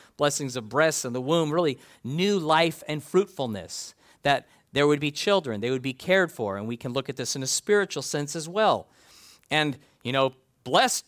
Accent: American